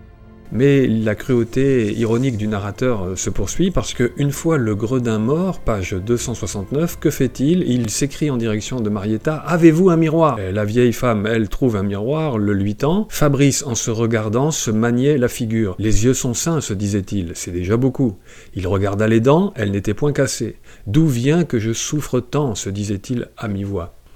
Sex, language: male, French